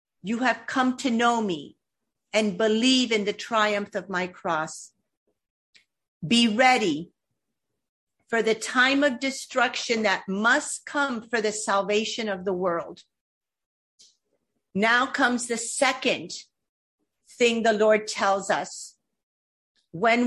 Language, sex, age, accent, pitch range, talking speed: English, female, 50-69, American, 200-245 Hz, 120 wpm